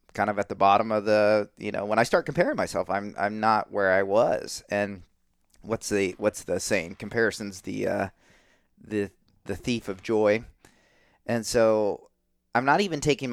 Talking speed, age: 180 wpm, 30-49